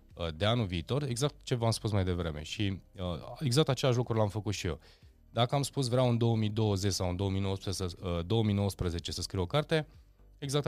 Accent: native